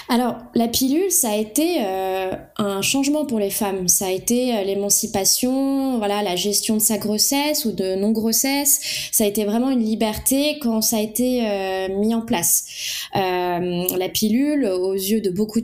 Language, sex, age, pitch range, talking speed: French, female, 20-39, 195-245 Hz, 180 wpm